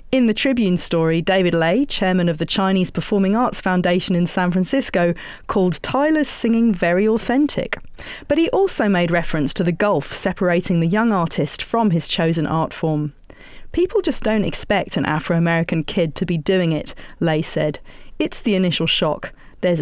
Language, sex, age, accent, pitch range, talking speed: English, female, 40-59, British, 170-225 Hz, 170 wpm